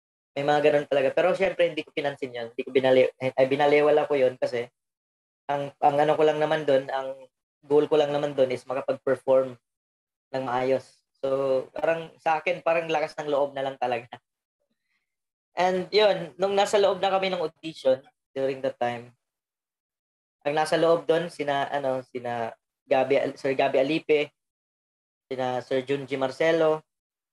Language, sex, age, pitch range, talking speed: Filipino, female, 20-39, 130-160 Hz, 155 wpm